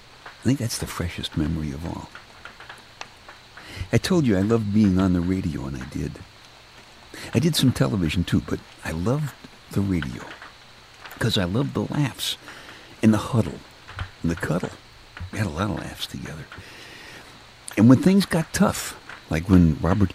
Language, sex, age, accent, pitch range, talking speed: English, male, 60-79, American, 85-125 Hz, 165 wpm